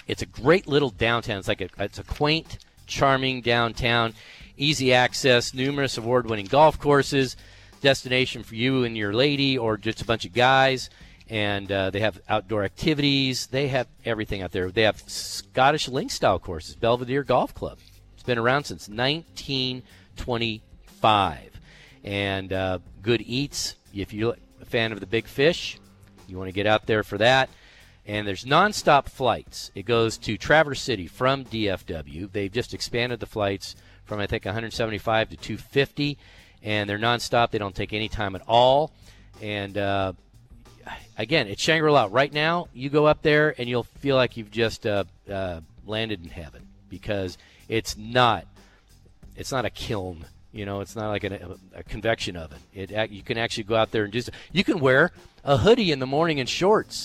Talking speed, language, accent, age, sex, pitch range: 170 wpm, English, American, 40-59, male, 100-130 Hz